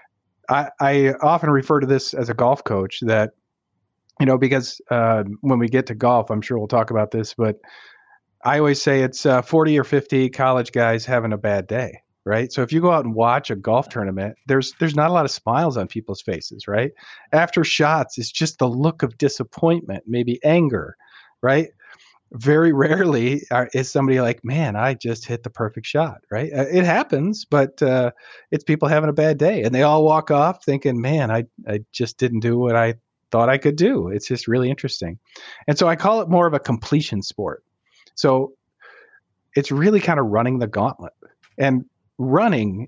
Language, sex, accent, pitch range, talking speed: English, male, American, 110-145 Hz, 195 wpm